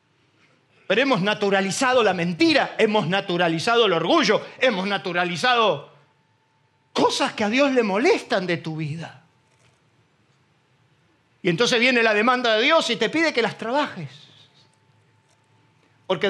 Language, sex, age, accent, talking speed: Spanish, male, 50-69, Argentinian, 125 wpm